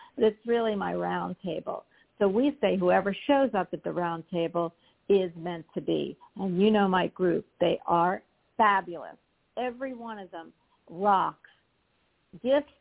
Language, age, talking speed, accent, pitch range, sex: English, 50-69, 150 wpm, American, 185-235 Hz, female